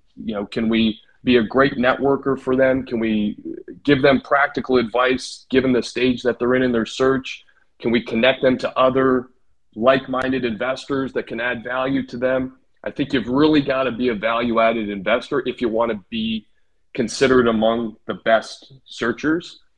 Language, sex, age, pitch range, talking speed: English, male, 30-49, 115-135 Hz, 185 wpm